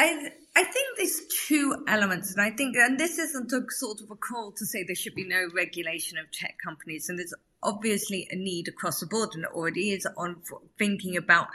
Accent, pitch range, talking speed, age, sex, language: British, 170-205 Hz, 210 wpm, 30-49, female, English